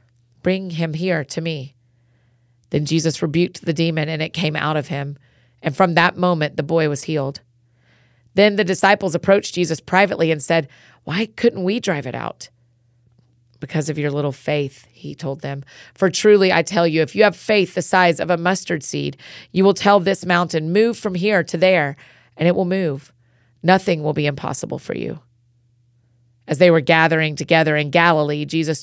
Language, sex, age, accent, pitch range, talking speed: English, female, 30-49, American, 135-180 Hz, 185 wpm